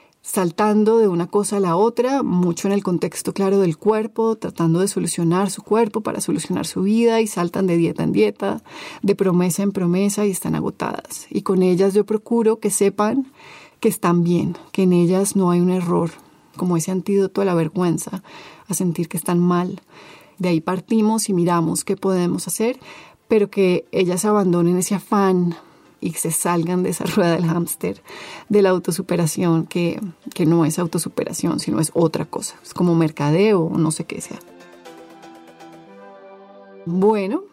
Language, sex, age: Spanish, female, 30-49